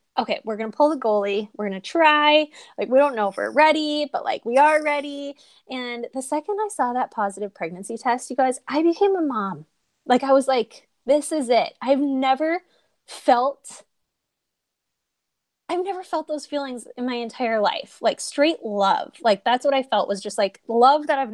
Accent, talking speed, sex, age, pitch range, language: American, 200 wpm, female, 20-39, 210-295 Hz, English